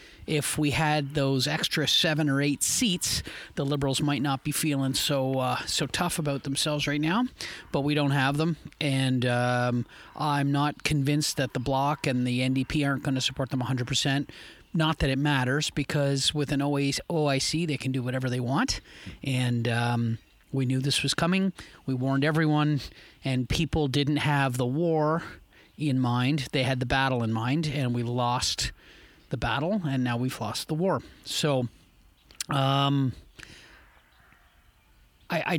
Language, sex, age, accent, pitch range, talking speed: English, male, 40-59, American, 130-150 Hz, 165 wpm